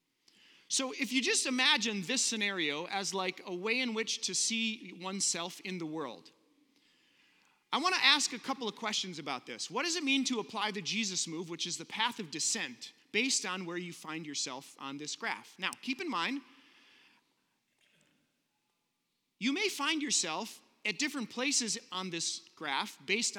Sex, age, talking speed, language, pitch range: male, 30-49, 175 wpm, English, 175-250 Hz